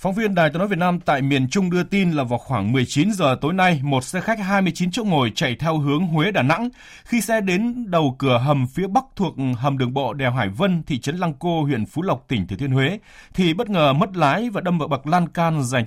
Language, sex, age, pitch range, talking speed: Vietnamese, male, 20-39, 120-170 Hz, 260 wpm